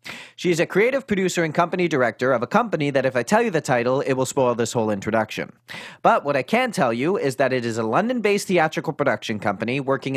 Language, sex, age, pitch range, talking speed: English, male, 30-49, 125-180 Hz, 235 wpm